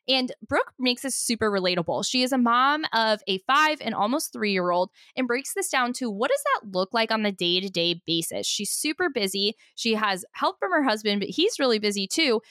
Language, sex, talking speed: English, female, 210 wpm